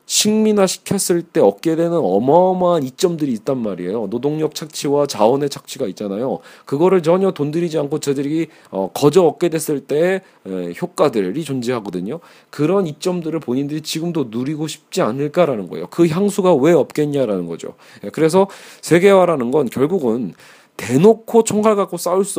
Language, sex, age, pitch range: Korean, male, 40-59, 135-180 Hz